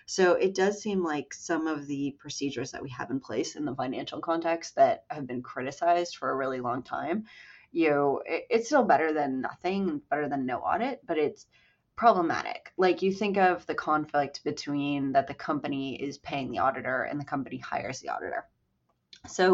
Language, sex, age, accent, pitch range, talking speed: English, female, 20-39, American, 140-180 Hz, 195 wpm